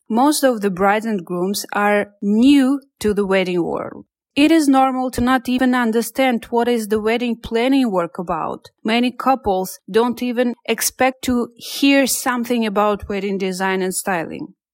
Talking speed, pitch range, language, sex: 160 wpm, 190-250 Hz, English, female